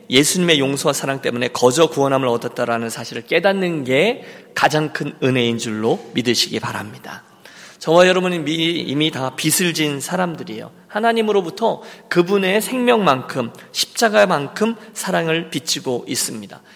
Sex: male